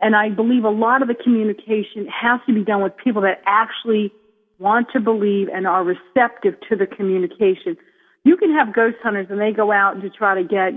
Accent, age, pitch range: American, 40-59, 195-230 Hz